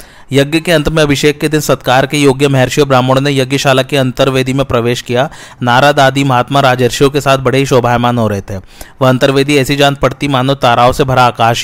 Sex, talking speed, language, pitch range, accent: male, 205 wpm, Hindi, 125-140 Hz, native